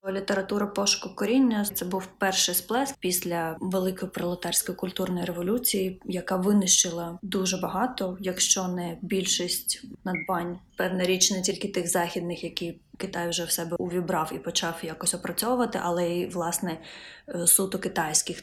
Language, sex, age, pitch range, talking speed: Ukrainian, female, 20-39, 175-200 Hz, 135 wpm